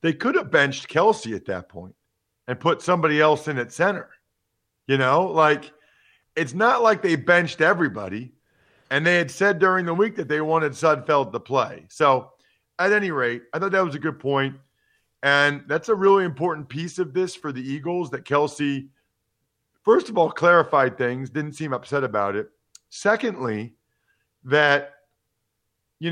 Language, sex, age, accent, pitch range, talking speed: English, male, 40-59, American, 115-155 Hz, 170 wpm